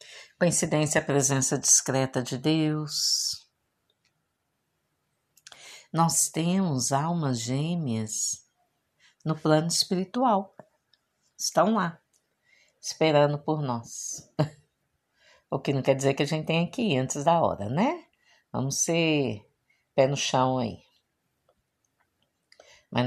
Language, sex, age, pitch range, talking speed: Portuguese, female, 60-79, 130-165 Hz, 105 wpm